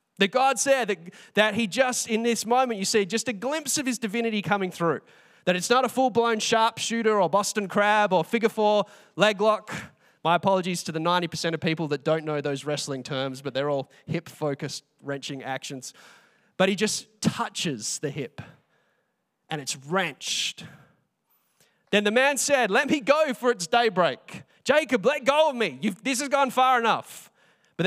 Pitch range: 160-230 Hz